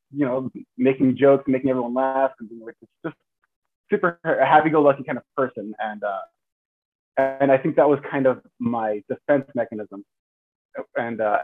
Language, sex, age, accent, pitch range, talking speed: English, male, 20-39, American, 115-140 Hz, 150 wpm